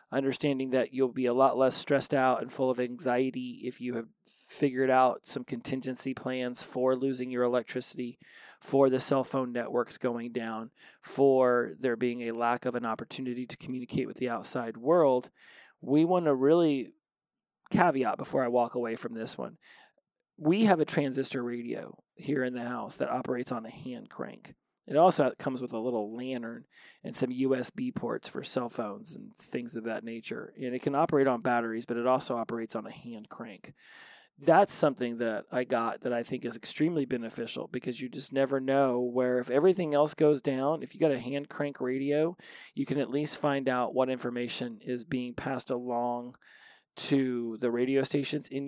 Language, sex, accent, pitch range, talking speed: English, male, American, 120-135 Hz, 185 wpm